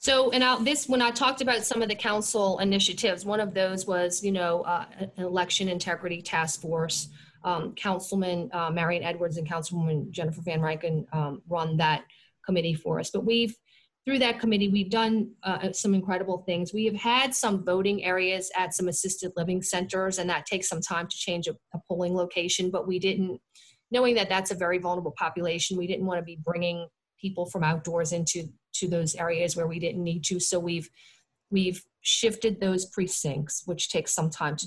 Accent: American